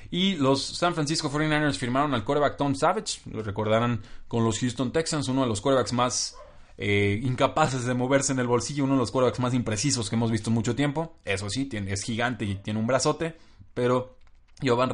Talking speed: 200 wpm